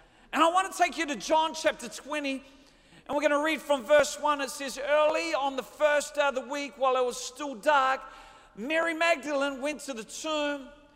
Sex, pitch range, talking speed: male, 275-320 Hz, 215 wpm